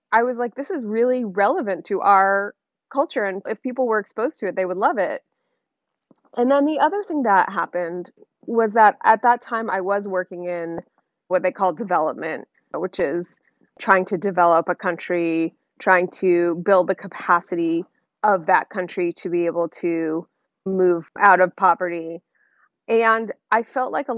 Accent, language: American, English